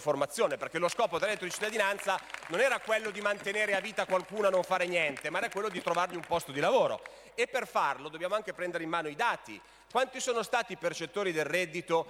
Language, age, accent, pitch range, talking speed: Italian, 30-49, native, 170-225 Hz, 230 wpm